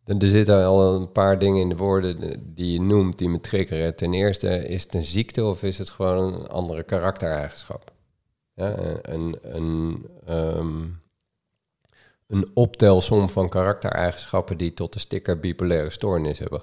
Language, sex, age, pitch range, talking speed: Dutch, male, 40-59, 85-100 Hz, 145 wpm